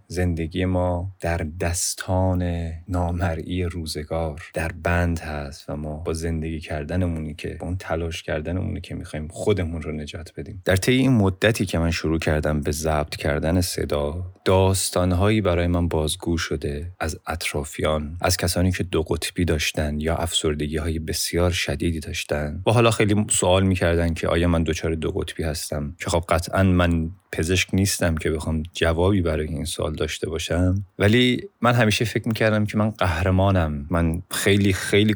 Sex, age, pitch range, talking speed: male, 30-49, 80-100 Hz, 155 wpm